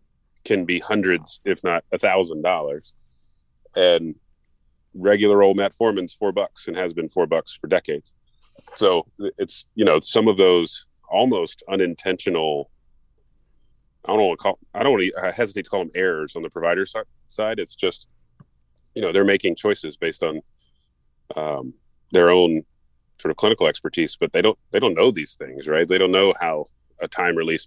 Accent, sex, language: American, male, English